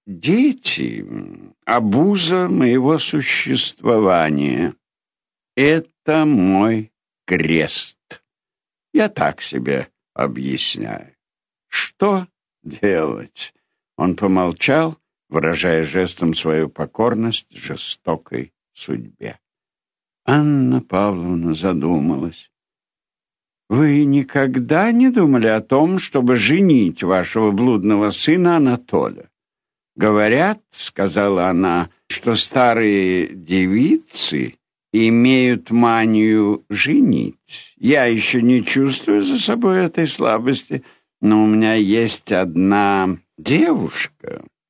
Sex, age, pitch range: male, 60-79, 95-140 Hz